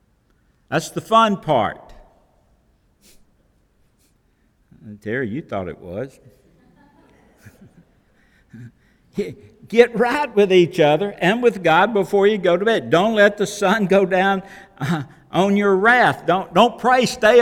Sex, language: male, English